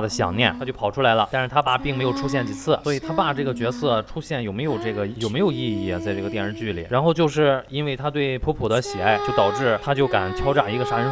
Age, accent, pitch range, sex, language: 20-39, native, 105-150 Hz, male, Chinese